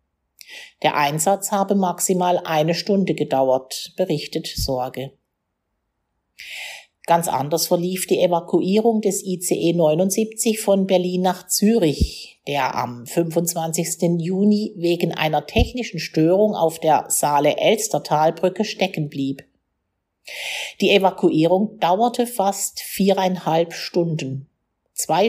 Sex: female